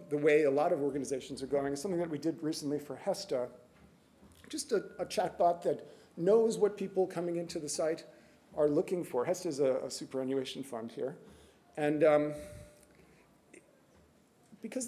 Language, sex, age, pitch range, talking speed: English, male, 40-59, 140-165 Hz, 165 wpm